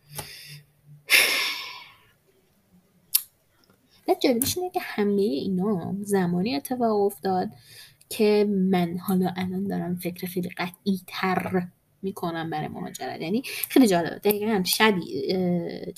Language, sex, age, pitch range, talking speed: Persian, female, 20-39, 175-240 Hz, 100 wpm